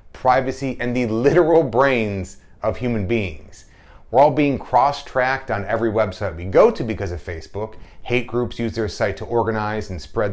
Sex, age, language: male, 30-49, English